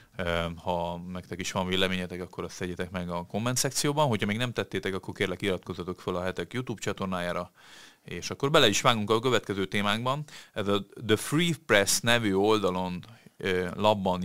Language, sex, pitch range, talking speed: Hungarian, male, 90-105 Hz, 170 wpm